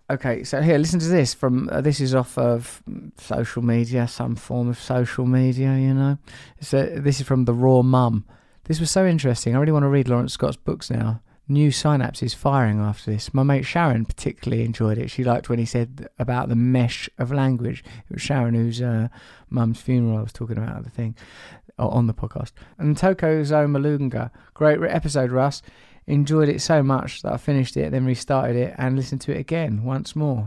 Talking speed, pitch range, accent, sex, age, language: 200 wpm, 120-145 Hz, British, male, 20-39, English